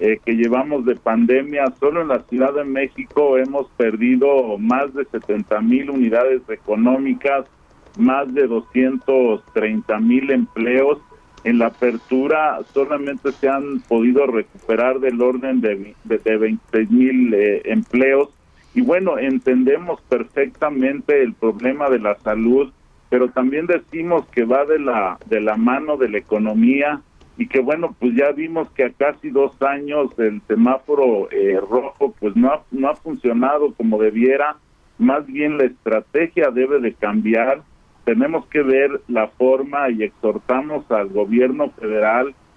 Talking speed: 145 wpm